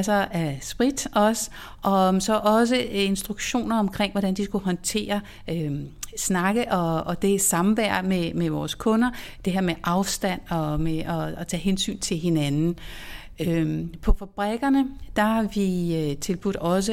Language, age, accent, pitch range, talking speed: Danish, 60-79, native, 175-220 Hz, 150 wpm